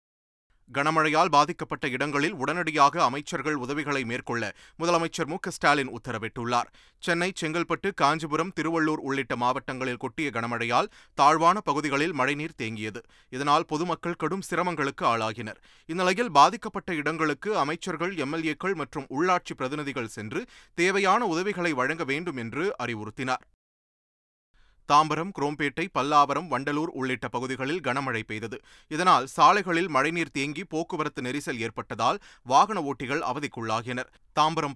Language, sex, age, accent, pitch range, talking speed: Tamil, male, 30-49, native, 125-165 Hz, 105 wpm